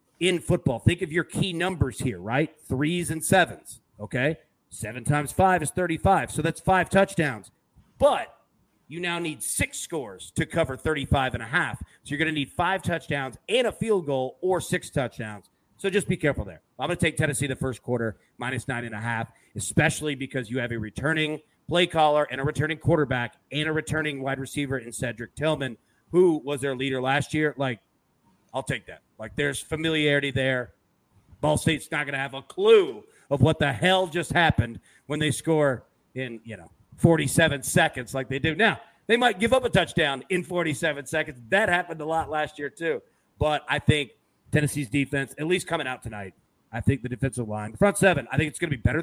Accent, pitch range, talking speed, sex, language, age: American, 130-165 Hz, 205 wpm, male, English, 40-59